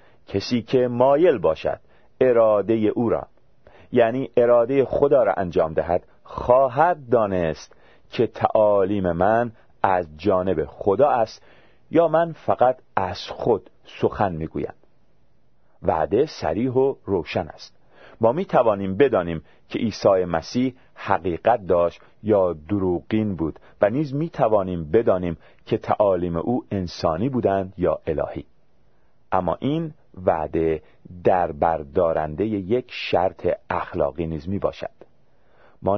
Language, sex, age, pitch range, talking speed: Persian, male, 40-59, 85-120 Hz, 110 wpm